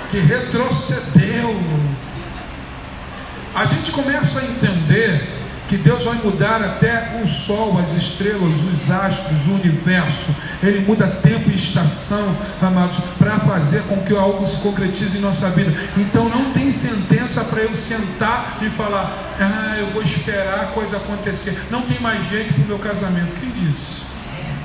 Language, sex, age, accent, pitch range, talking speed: Portuguese, male, 40-59, Brazilian, 165-215 Hz, 150 wpm